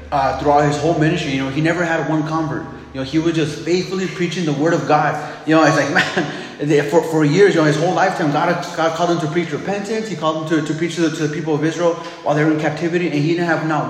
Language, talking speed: English, 295 wpm